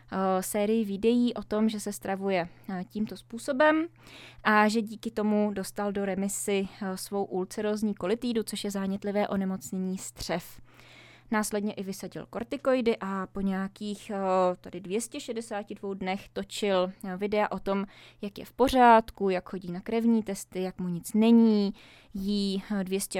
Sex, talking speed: female, 135 wpm